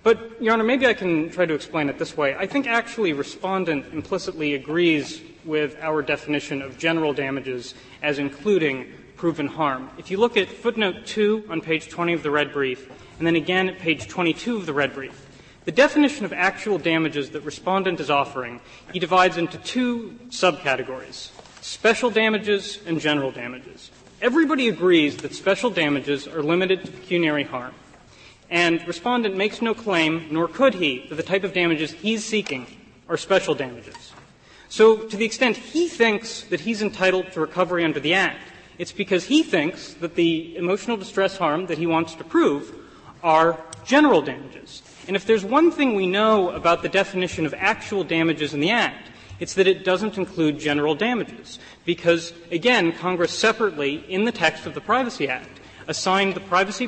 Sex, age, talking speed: male, 30-49, 175 wpm